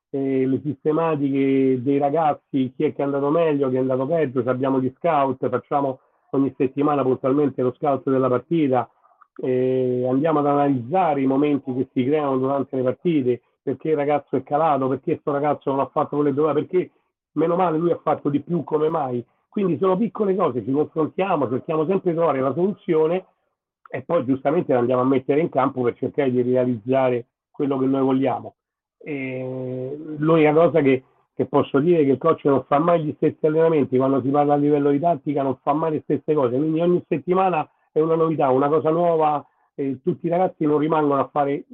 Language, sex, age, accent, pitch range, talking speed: Italian, male, 40-59, native, 130-160 Hz, 200 wpm